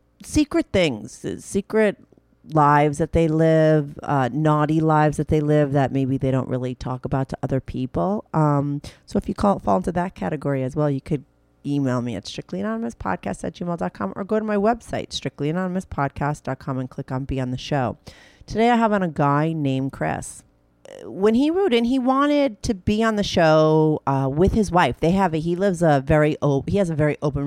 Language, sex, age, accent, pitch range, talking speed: English, female, 40-59, American, 135-175 Hz, 200 wpm